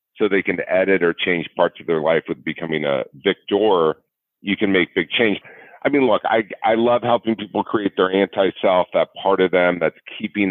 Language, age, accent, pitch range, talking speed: English, 40-59, American, 80-100 Hz, 205 wpm